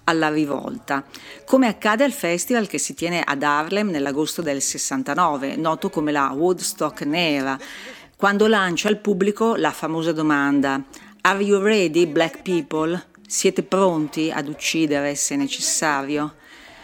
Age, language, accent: 50-69, Italian, native